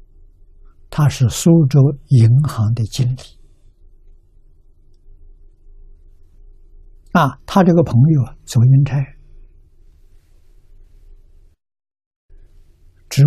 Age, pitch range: 60-79, 80-125 Hz